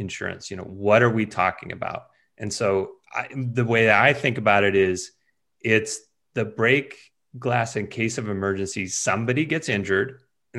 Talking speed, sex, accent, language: 175 wpm, male, American, English